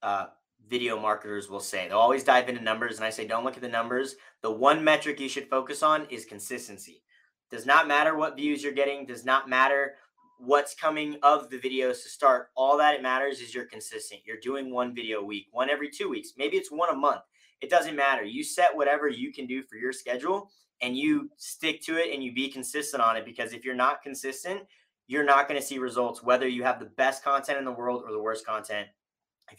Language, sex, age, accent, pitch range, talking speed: English, male, 20-39, American, 130-150 Hz, 230 wpm